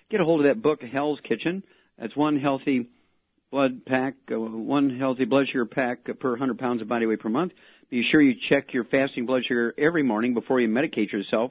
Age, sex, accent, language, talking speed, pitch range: 50-69, male, American, English, 210 wpm, 120-150 Hz